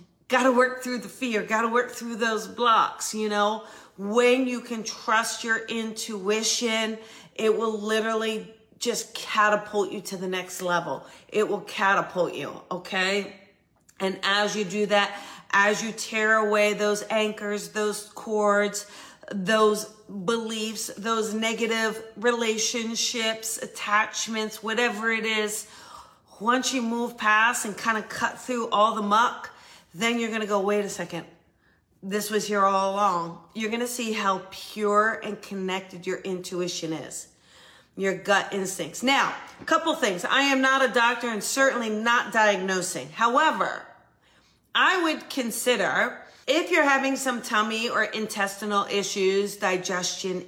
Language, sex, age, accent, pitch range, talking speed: English, female, 40-59, American, 195-230 Hz, 145 wpm